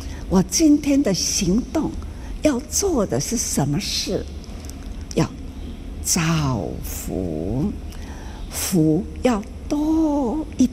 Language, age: Chinese, 60-79